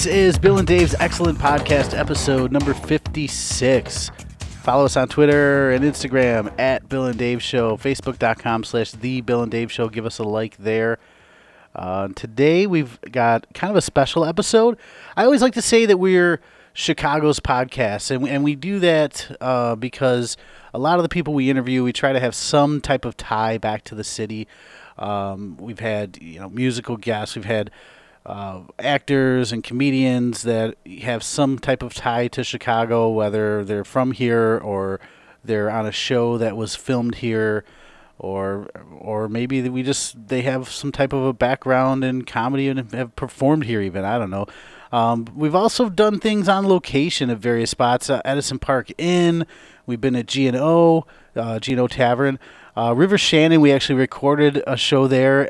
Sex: male